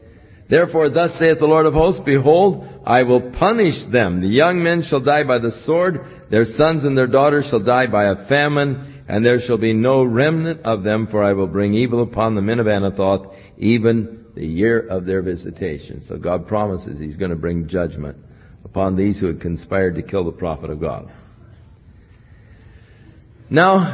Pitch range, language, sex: 100-130 Hz, English, male